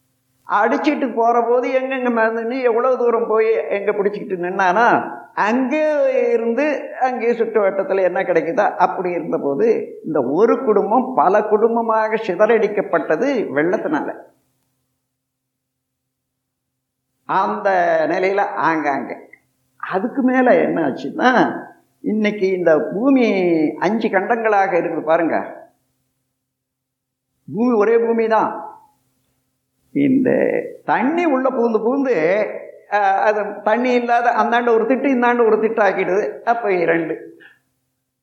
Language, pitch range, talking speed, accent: Tamil, 170-250 Hz, 95 wpm, native